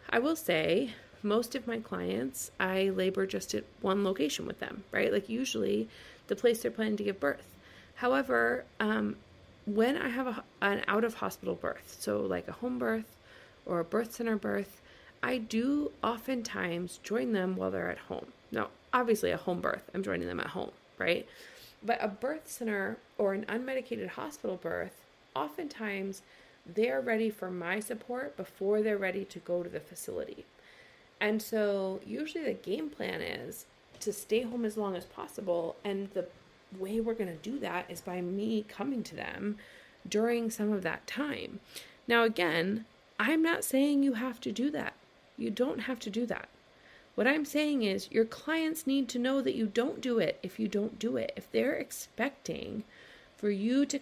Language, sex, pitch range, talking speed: English, female, 190-245 Hz, 180 wpm